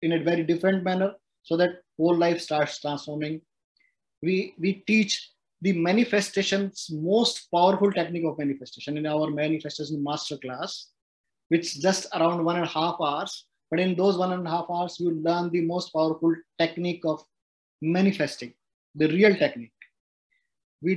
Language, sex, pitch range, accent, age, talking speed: English, male, 165-205 Hz, Indian, 20-39, 155 wpm